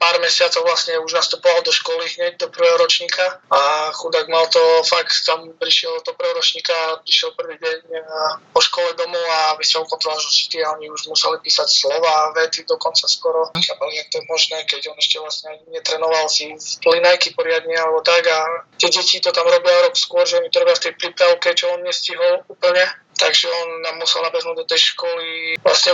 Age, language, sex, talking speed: 20-39, Slovak, male, 190 wpm